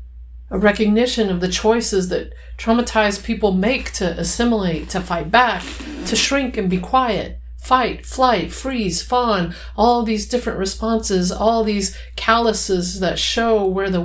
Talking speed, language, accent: 145 wpm, English, American